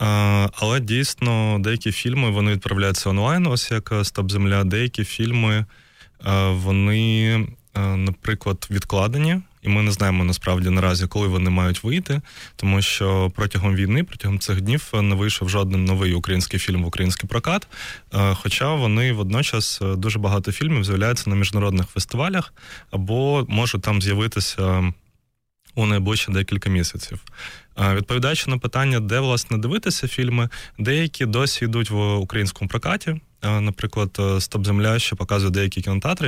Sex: male